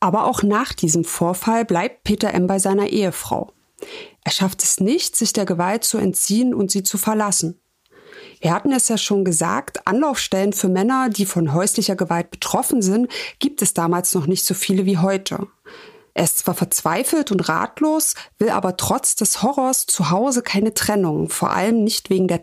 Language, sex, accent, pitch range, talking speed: German, female, German, 180-245 Hz, 180 wpm